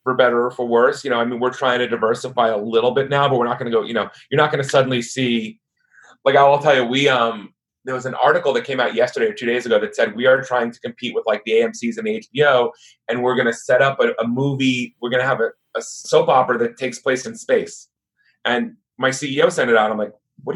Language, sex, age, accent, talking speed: English, male, 30-49, American, 270 wpm